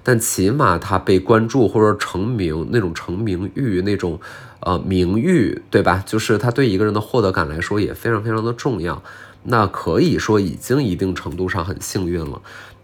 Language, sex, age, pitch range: Chinese, male, 20-39, 95-120 Hz